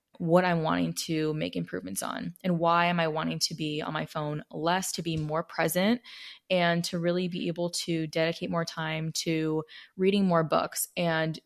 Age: 20-39